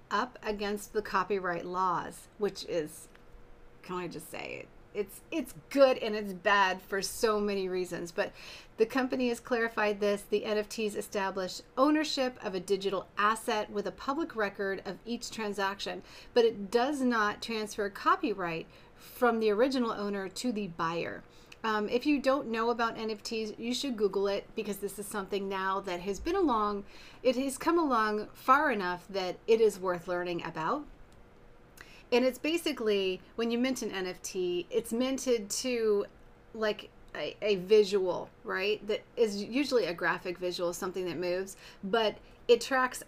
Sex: female